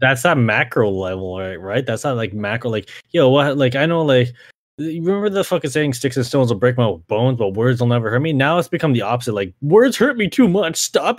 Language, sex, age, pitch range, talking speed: English, male, 20-39, 110-145 Hz, 250 wpm